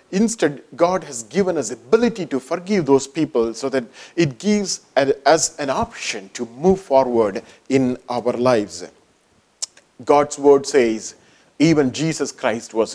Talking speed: 145 wpm